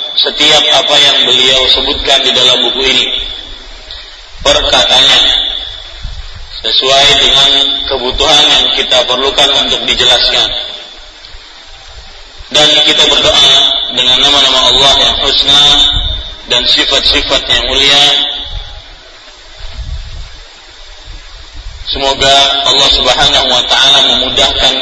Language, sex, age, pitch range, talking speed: Malay, male, 30-49, 125-140 Hz, 85 wpm